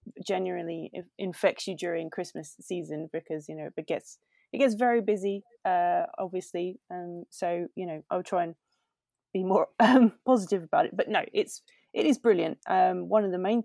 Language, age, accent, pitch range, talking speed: English, 20-39, British, 160-200 Hz, 180 wpm